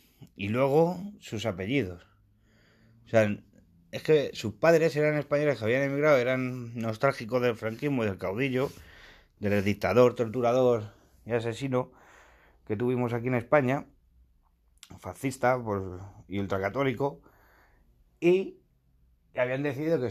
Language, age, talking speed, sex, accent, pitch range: Spanish, 30-49, 115 wpm, male, Spanish, 100-135 Hz